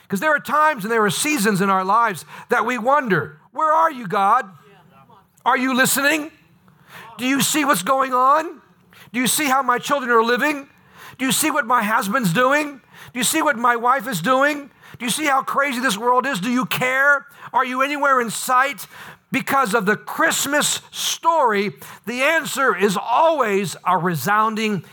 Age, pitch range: 50-69, 180-270 Hz